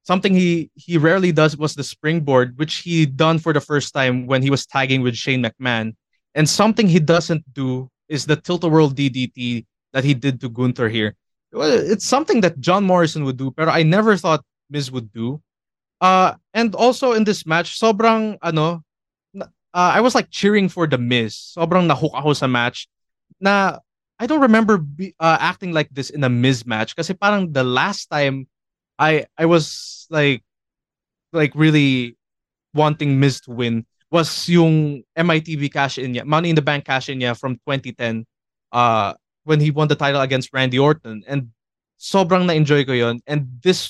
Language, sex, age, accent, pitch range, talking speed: English, male, 20-39, Filipino, 130-165 Hz, 180 wpm